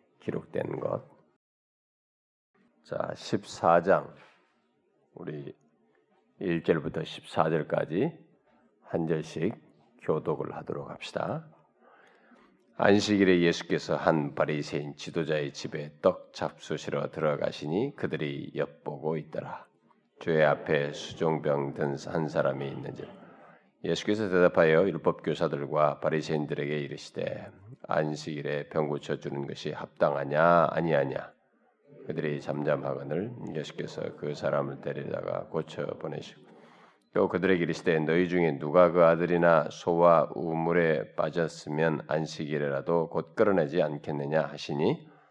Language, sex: Korean, male